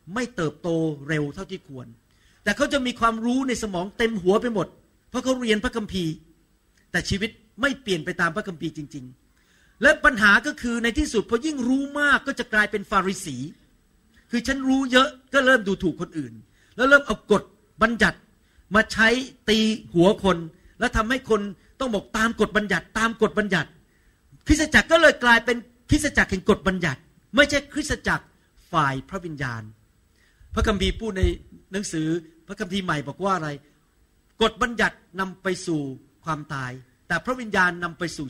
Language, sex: Thai, male